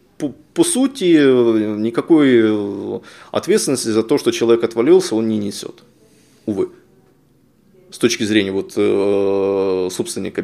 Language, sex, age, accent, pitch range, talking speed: Ukrainian, male, 20-39, native, 105-160 Hz, 100 wpm